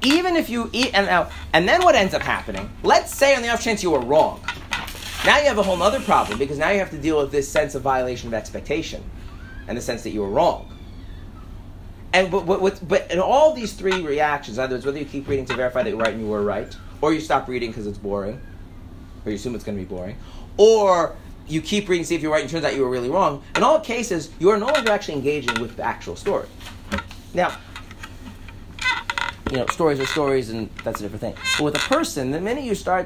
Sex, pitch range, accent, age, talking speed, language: male, 100-165 Hz, American, 30-49, 245 wpm, English